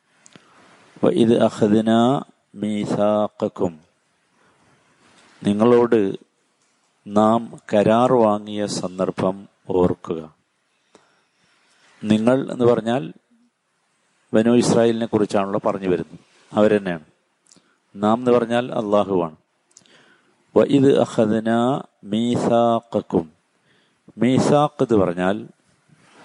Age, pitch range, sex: 50-69, 100-125 Hz, male